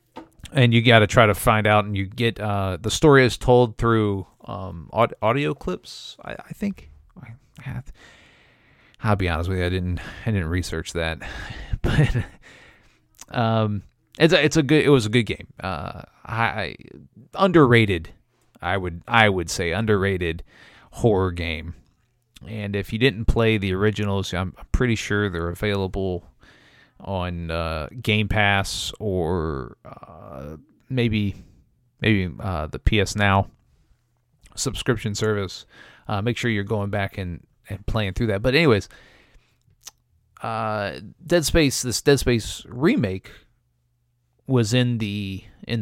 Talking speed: 140 wpm